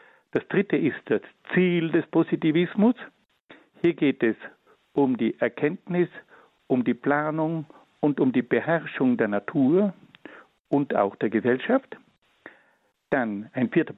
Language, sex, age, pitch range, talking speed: German, male, 60-79, 130-195 Hz, 125 wpm